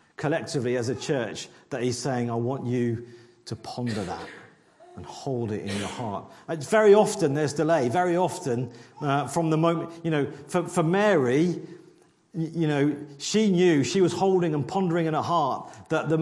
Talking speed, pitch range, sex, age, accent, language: 180 wpm, 125-170 Hz, male, 40-59, British, English